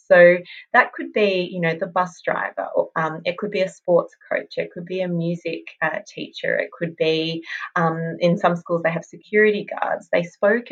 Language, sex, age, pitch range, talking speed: English, female, 30-49, 160-190 Hz, 200 wpm